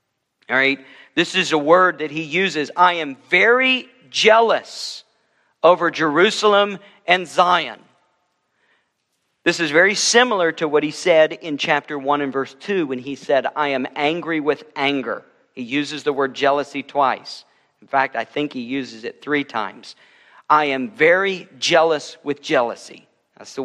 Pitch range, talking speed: 140-195 Hz, 155 wpm